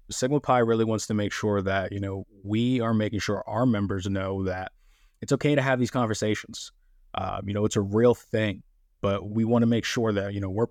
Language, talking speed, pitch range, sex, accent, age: English, 230 wpm, 100-120 Hz, male, American, 20-39